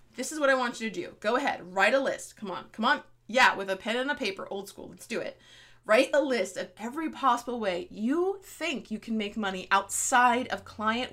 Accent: American